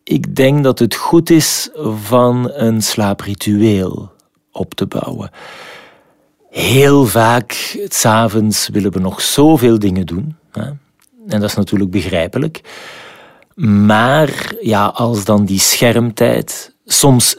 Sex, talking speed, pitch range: male, 115 wpm, 100-125 Hz